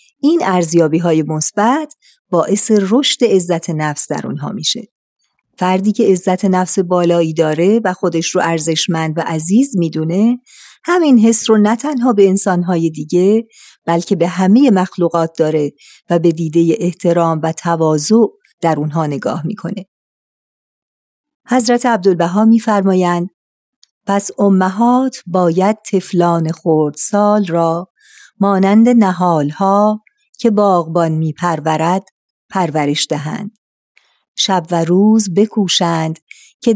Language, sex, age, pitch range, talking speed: Persian, female, 40-59, 165-210 Hz, 110 wpm